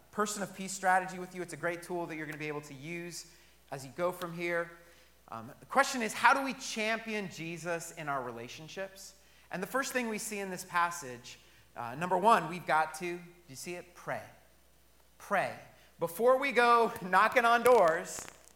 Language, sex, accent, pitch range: English, male, American, 120-190 Hz